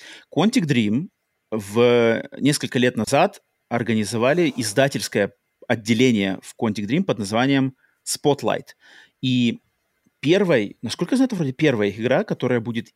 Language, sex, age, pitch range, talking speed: Russian, male, 30-49, 110-140 Hz, 120 wpm